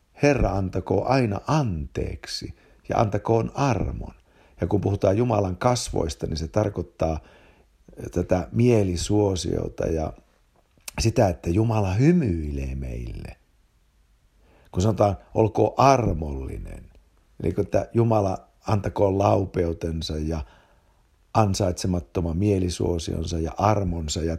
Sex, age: male, 60-79